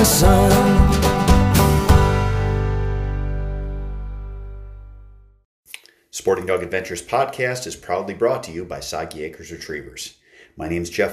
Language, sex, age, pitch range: English, male, 30-49, 85-110 Hz